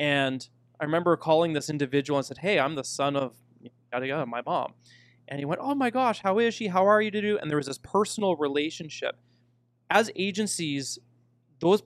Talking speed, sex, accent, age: 190 wpm, male, American, 30-49